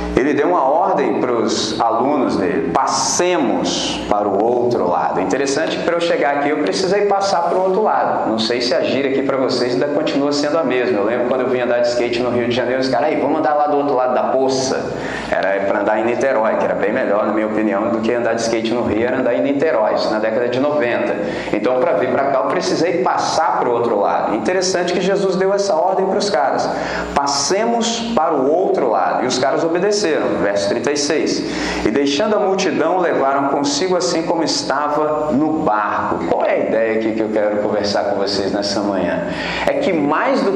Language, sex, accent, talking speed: Portuguese, male, Brazilian, 220 wpm